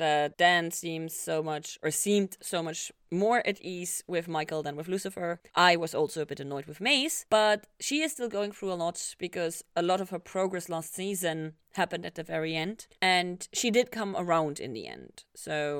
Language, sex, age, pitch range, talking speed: English, female, 30-49, 165-215 Hz, 210 wpm